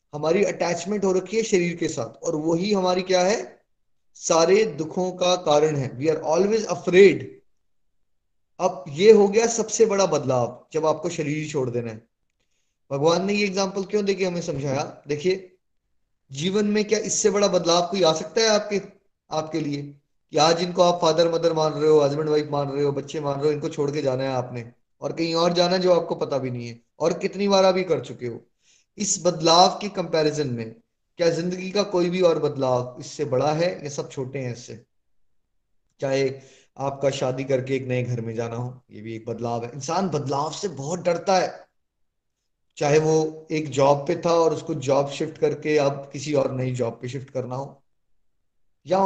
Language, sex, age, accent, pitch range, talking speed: Hindi, male, 20-39, native, 135-180 Hz, 195 wpm